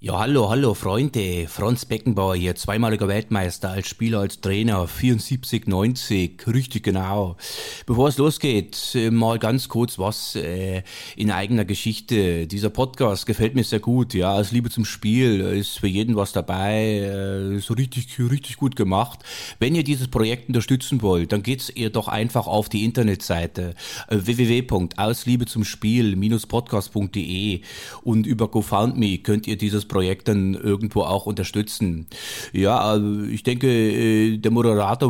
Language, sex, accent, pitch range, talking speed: German, male, German, 95-115 Hz, 135 wpm